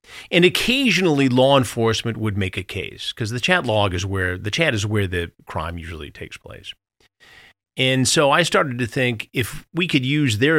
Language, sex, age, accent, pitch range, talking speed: English, male, 40-59, American, 95-125 Hz, 195 wpm